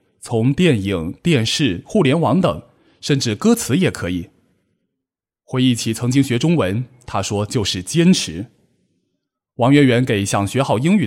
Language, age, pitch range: Chinese, 20-39, 105-145 Hz